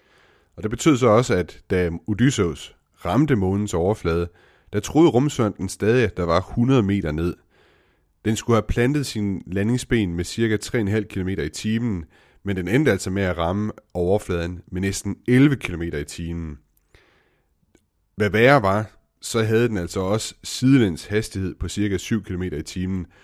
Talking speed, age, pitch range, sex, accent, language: 160 wpm, 30-49, 90-110 Hz, male, native, Danish